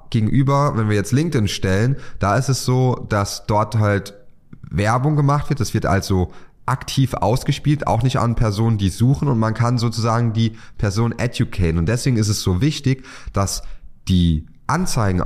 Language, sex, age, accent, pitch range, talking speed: German, male, 30-49, German, 95-125 Hz, 170 wpm